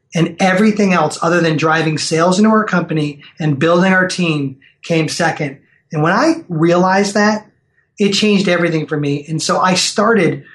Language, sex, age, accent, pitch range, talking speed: English, male, 30-49, American, 155-185 Hz, 170 wpm